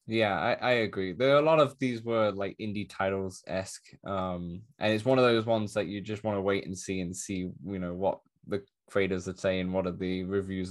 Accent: British